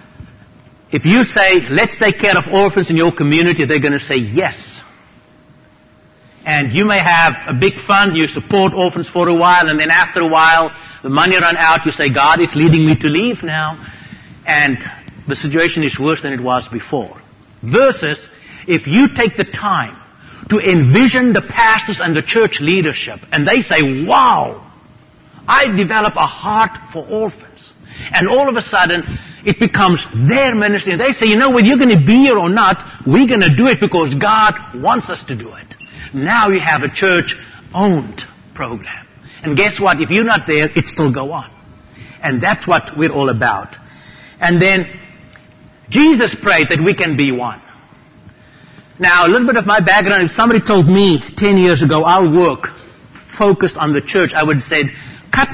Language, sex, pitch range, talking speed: English, male, 150-200 Hz, 185 wpm